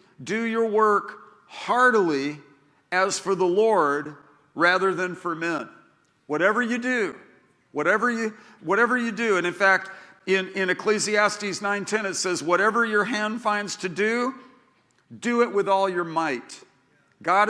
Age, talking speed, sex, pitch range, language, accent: 50-69, 145 wpm, male, 170-215 Hz, English, American